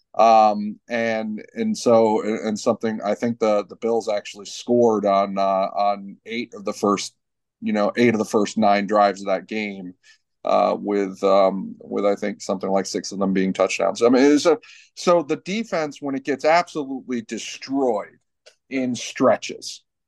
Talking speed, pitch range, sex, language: 170 wpm, 110-130 Hz, male, English